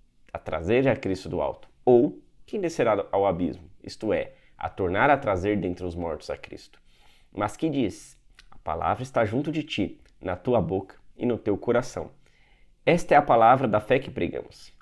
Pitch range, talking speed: 90-125 Hz, 185 wpm